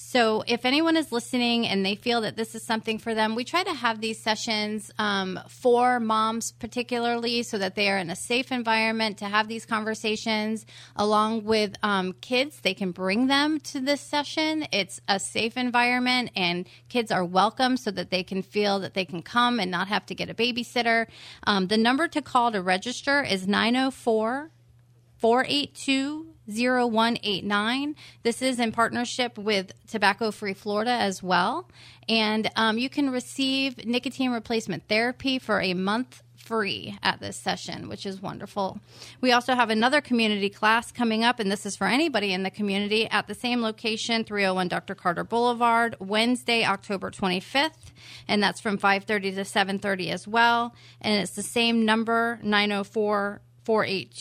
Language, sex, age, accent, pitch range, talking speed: English, female, 30-49, American, 195-235 Hz, 170 wpm